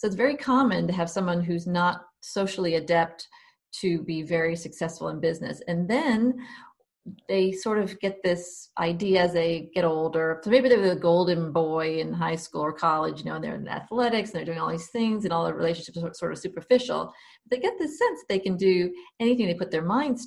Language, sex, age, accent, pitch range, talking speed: English, female, 40-59, American, 165-230 Hz, 215 wpm